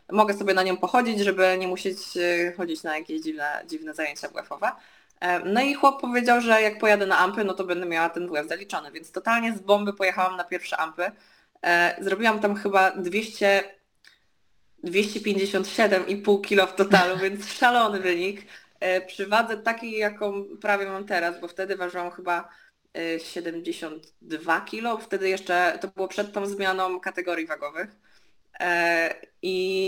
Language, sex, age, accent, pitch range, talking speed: Polish, female, 20-39, native, 175-210 Hz, 145 wpm